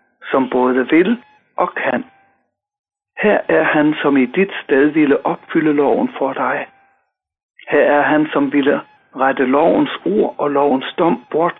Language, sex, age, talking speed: Danish, male, 60-79, 150 wpm